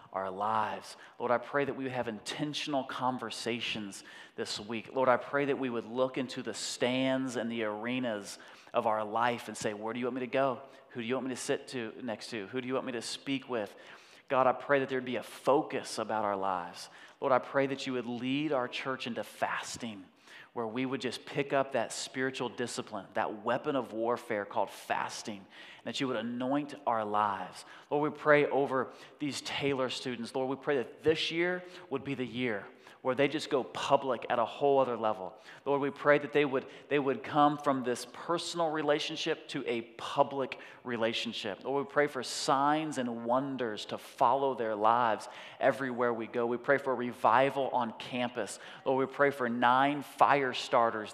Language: English